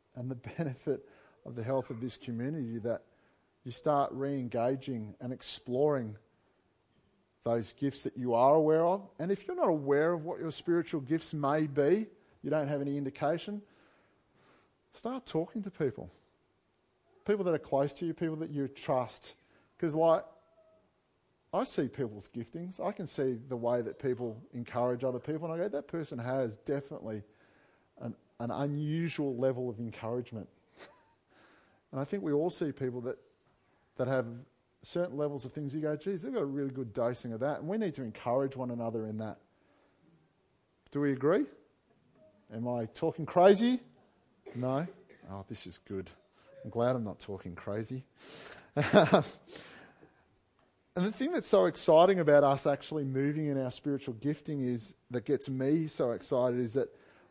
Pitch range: 120-155 Hz